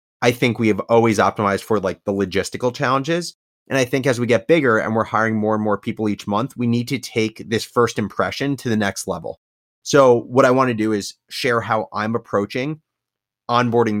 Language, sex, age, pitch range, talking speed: English, male, 30-49, 105-125 Hz, 215 wpm